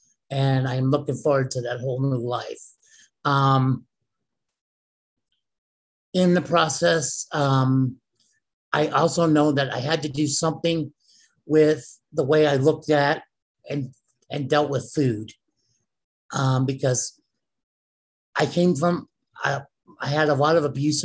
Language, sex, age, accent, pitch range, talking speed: English, male, 50-69, American, 130-155 Hz, 130 wpm